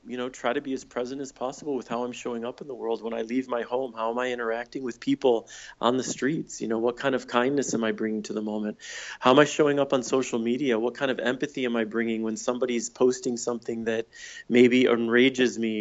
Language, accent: English, American